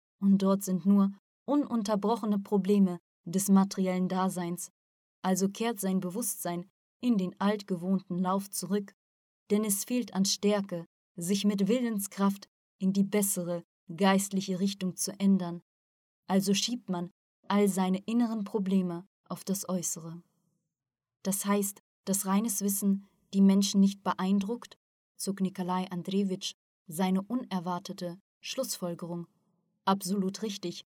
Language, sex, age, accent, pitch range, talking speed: German, female, 20-39, German, 185-200 Hz, 115 wpm